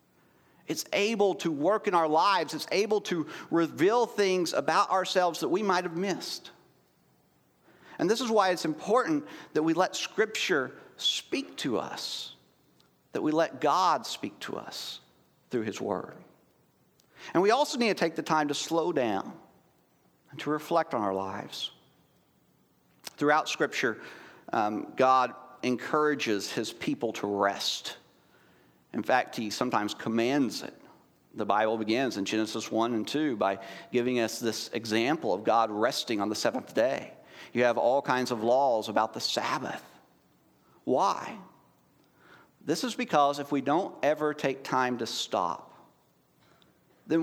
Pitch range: 115-185 Hz